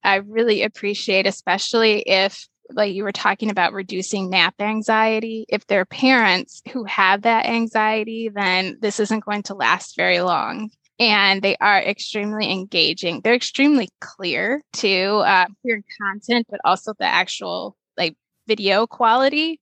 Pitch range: 195-230 Hz